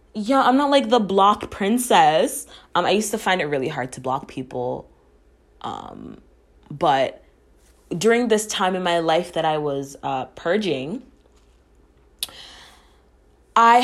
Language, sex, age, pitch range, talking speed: English, female, 20-39, 140-195 Hz, 140 wpm